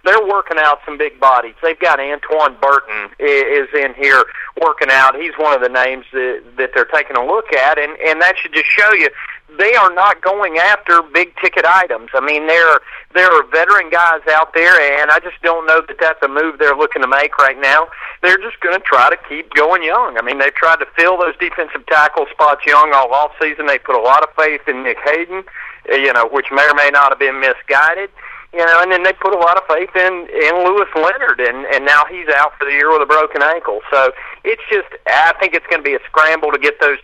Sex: male